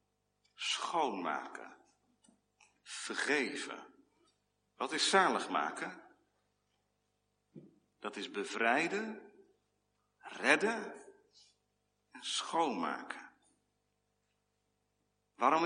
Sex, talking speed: male, 50 wpm